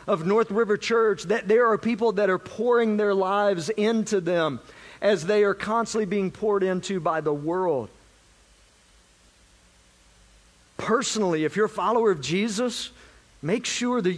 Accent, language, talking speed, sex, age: American, English, 150 wpm, male, 50-69